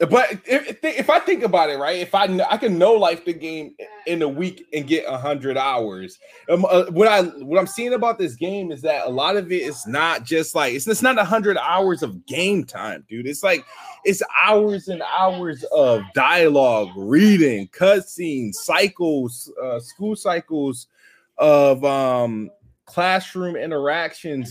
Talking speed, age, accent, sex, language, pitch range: 180 wpm, 20-39, American, male, English, 145-200 Hz